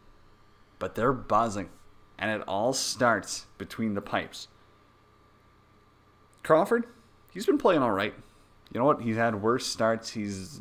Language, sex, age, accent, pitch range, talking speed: English, male, 30-49, American, 100-115 Hz, 135 wpm